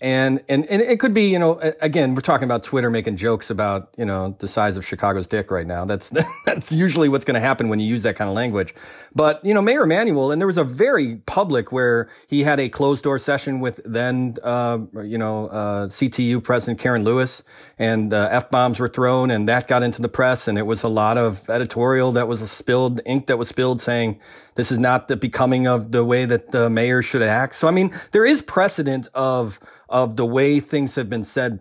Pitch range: 110-135 Hz